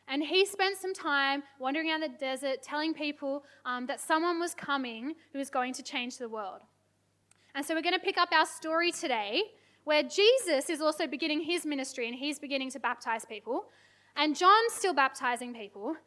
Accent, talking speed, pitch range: Australian, 190 wpm, 250-320 Hz